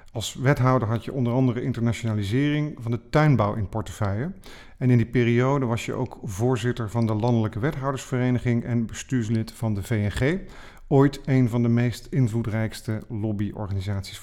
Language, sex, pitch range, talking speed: Dutch, male, 115-140 Hz, 150 wpm